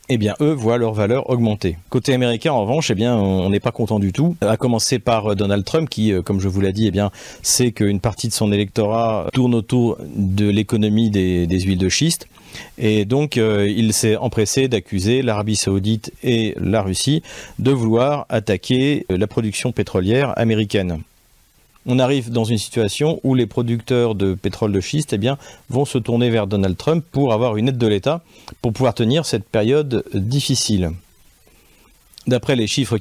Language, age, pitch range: French, 40-59, 100-125 Hz